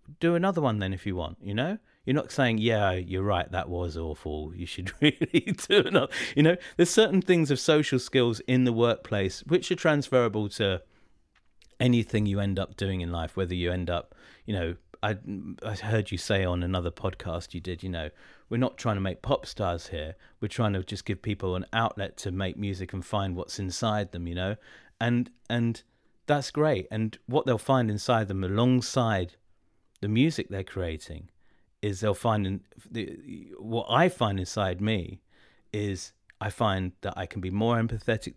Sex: male